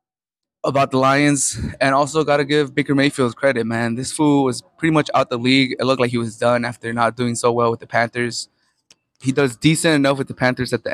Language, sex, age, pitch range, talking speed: English, male, 20-39, 120-135 Hz, 235 wpm